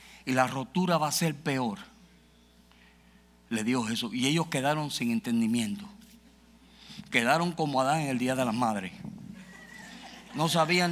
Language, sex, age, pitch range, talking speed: Spanish, male, 50-69, 145-210 Hz, 145 wpm